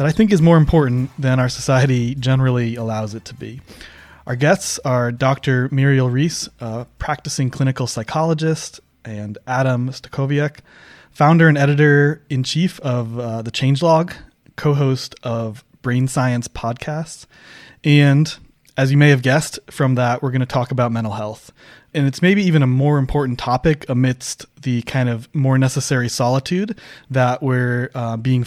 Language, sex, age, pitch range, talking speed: English, male, 20-39, 120-145 Hz, 155 wpm